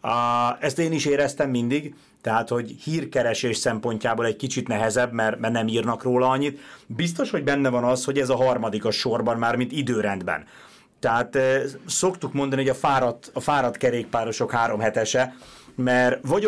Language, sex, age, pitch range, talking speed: Hungarian, male, 30-49, 115-140 Hz, 170 wpm